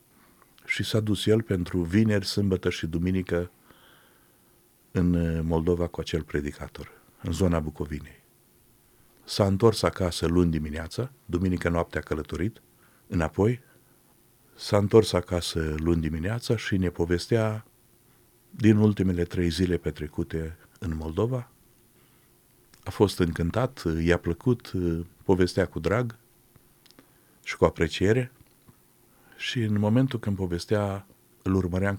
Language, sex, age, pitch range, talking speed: Romanian, male, 50-69, 85-110 Hz, 110 wpm